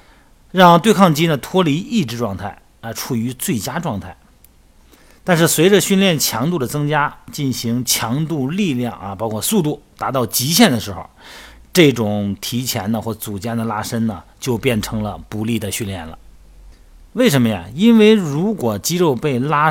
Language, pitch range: Chinese, 105-145 Hz